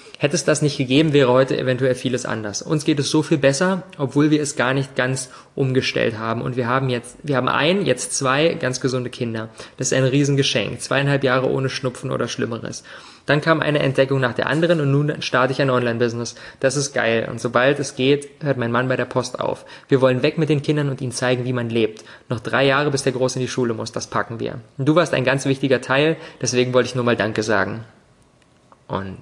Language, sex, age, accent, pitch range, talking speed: German, male, 20-39, German, 125-150 Hz, 230 wpm